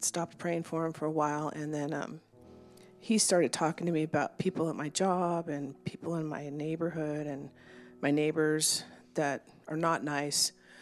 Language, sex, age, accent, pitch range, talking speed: English, female, 40-59, American, 150-185 Hz, 175 wpm